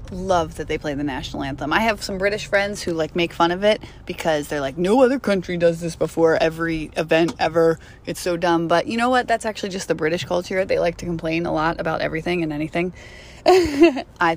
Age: 30-49